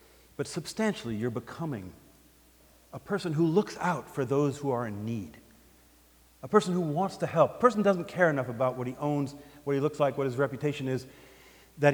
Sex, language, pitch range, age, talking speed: male, English, 100-135 Hz, 50-69, 195 wpm